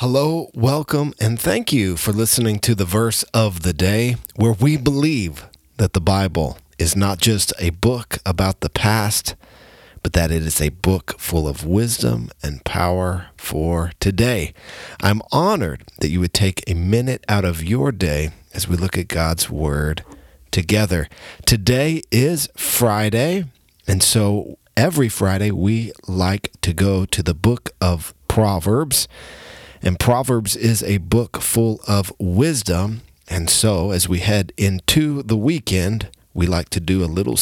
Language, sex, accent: English, male, American